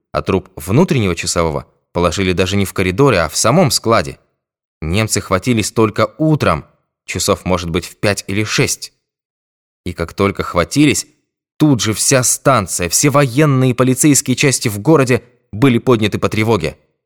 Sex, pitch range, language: male, 90-120 Hz, Russian